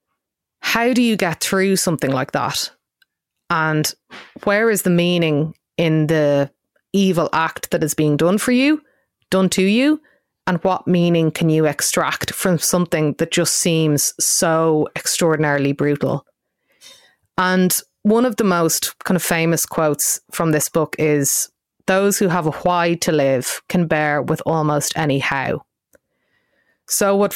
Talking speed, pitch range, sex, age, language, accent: 150 wpm, 155-185 Hz, female, 30-49, English, Irish